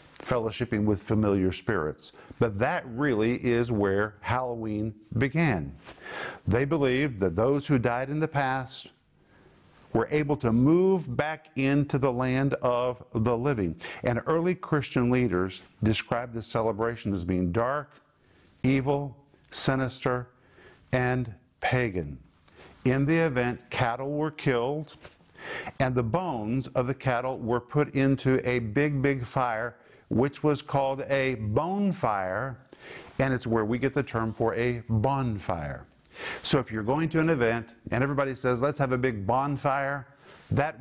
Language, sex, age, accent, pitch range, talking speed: English, male, 50-69, American, 110-135 Hz, 140 wpm